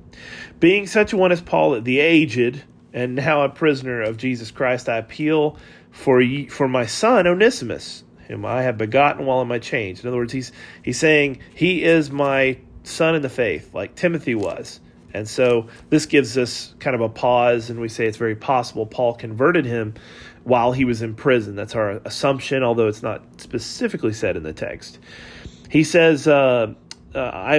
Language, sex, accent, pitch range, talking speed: English, male, American, 120-150 Hz, 185 wpm